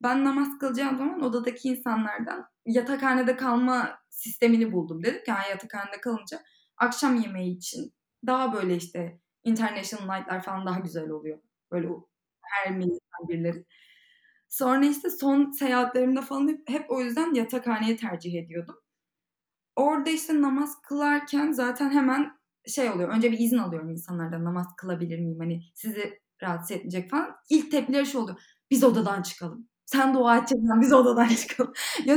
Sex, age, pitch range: female, 20-39, 205-280 Hz